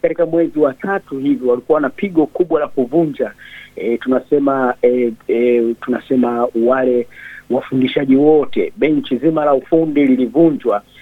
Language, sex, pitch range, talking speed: Swahili, male, 130-185 Hz, 130 wpm